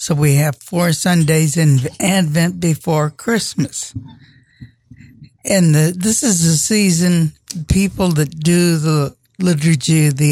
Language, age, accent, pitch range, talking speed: English, 60-79, American, 135-170 Hz, 130 wpm